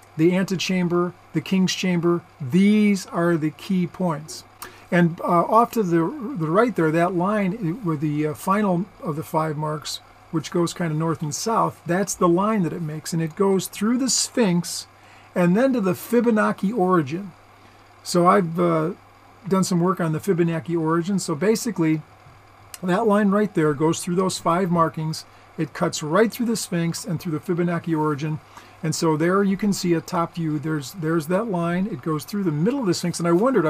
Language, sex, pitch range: English, male, 160-195 Hz